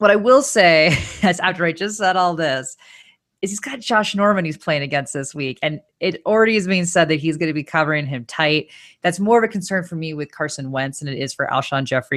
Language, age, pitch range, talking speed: English, 30-49, 135-180 Hz, 250 wpm